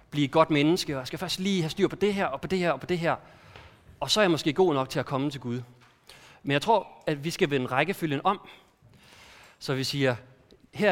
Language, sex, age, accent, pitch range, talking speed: Danish, male, 30-49, native, 130-175 Hz, 260 wpm